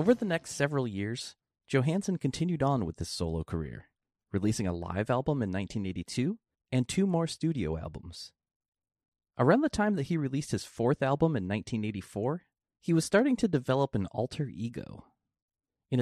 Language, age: English, 30-49